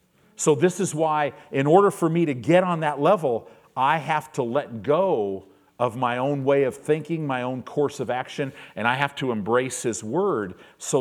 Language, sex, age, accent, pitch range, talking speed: English, male, 50-69, American, 120-170 Hz, 200 wpm